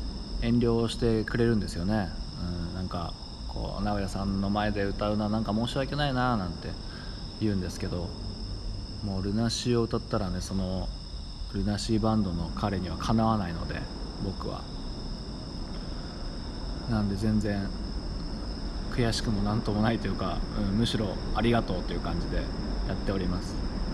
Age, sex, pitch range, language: 20-39, male, 85-110 Hz, Japanese